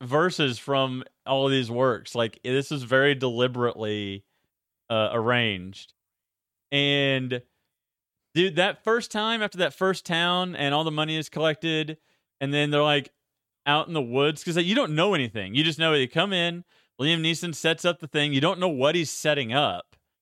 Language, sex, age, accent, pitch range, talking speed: English, male, 30-49, American, 135-175 Hz, 185 wpm